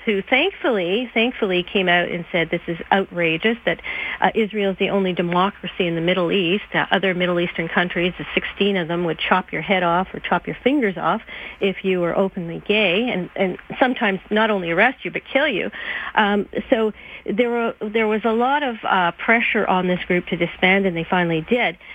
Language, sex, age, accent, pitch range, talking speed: English, female, 40-59, American, 180-230 Hz, 200 wpm